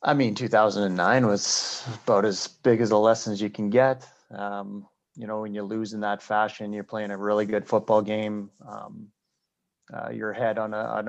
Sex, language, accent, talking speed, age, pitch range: male, English, American, 195 wpm, 30-49, 105-115 Hz